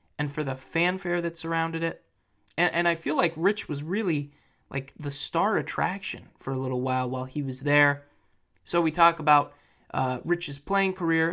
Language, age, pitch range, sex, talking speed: English, 30-49, 130-170 Hz, male, 185 wpm